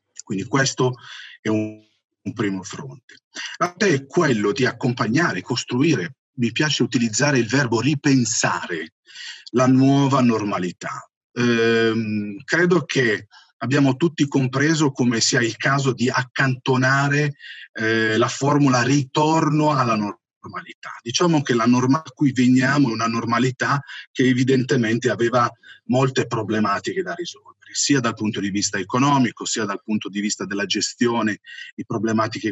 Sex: male